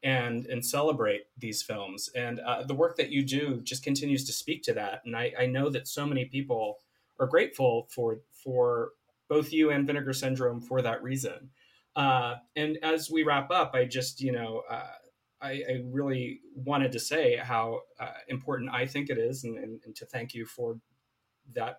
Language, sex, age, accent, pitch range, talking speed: English, male, 30-49, American, 125-150 Hz, 195 wpm